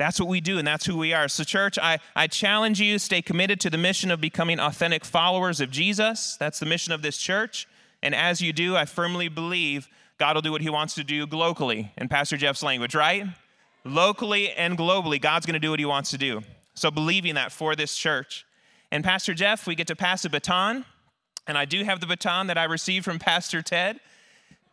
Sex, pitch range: male, 155-190 Hz